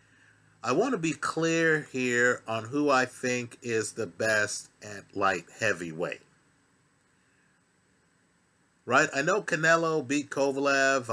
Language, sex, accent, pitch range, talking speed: English, male, American, 135-160 Hz, 120 wpm